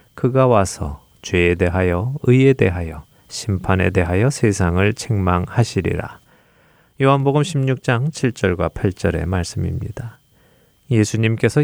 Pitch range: 95-125 Hz